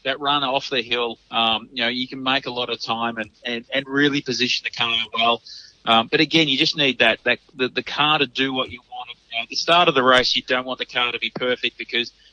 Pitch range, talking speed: 115-135 Hz, 270 wpm